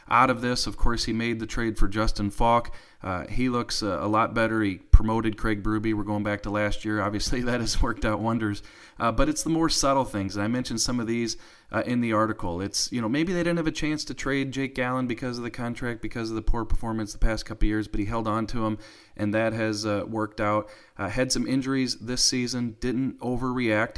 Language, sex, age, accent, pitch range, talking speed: English, male, 30-49, American, 105-125 Hz, 250 wpm